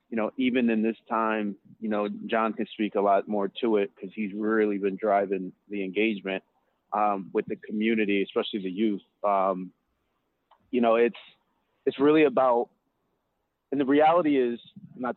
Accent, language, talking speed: American, English, 165 wpm